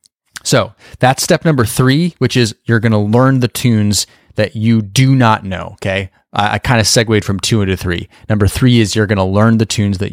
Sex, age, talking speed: male, 30-49, 225 wpm